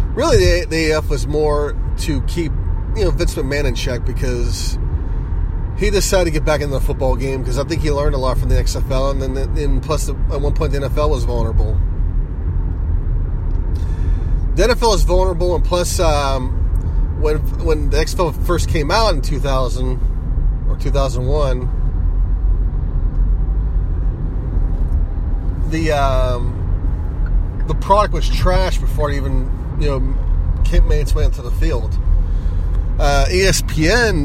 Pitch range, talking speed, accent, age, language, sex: 80-130 Hz, 150 wpm, American, 30-49, English, male